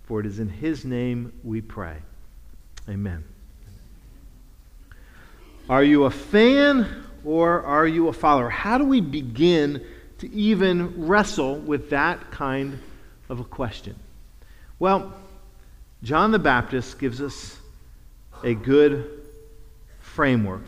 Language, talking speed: English, 115 wpm